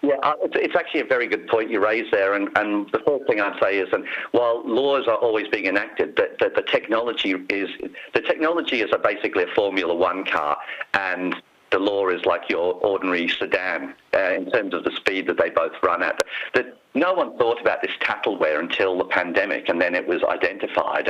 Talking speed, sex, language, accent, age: 210 wpm, male, English, British, 50-69